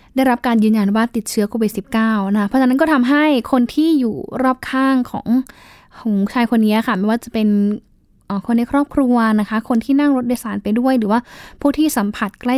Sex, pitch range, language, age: female, 215-255 Hz, Thai, 10-29